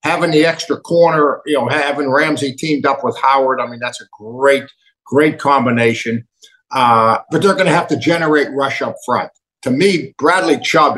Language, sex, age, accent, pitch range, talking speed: English, male, 50-69, American, 140-205 Hz, 180 wpm